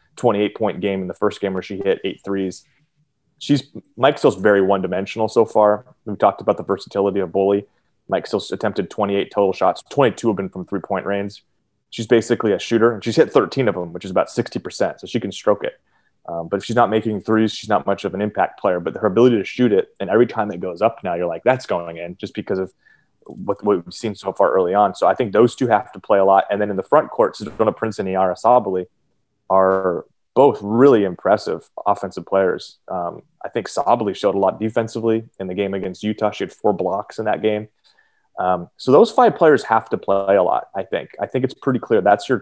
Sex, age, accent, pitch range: male, 30-49, American, 95-115 Hz